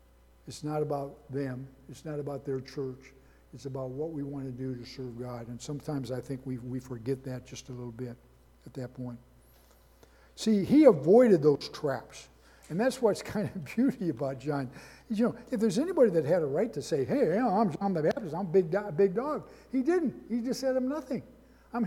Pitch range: 130-190 Hz